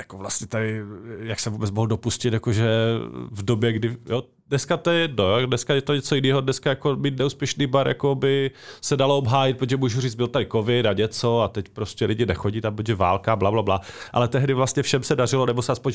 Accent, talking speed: native, 230 wpm